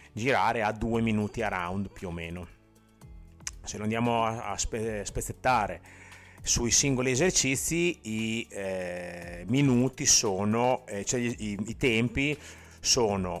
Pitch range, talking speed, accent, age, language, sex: 95-125 Hz, 125 wpm, native, 30-49, Italian, male